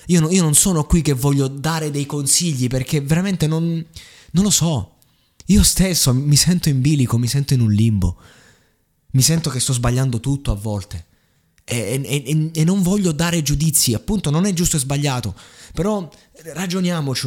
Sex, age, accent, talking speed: male, 20-39, native, 170 wpm